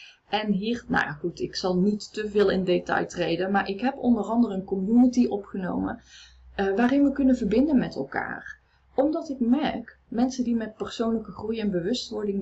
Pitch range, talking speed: 190-245 Hz, 180 wpm